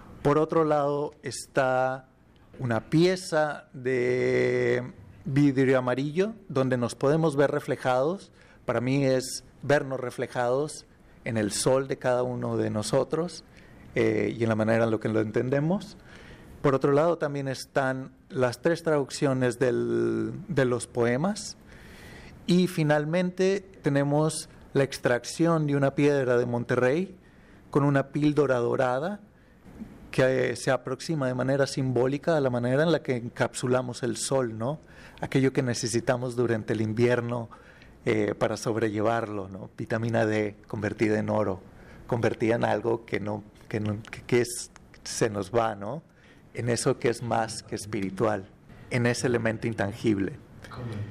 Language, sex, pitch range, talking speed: Spanish, male, 115-145 Hz, 135 wpm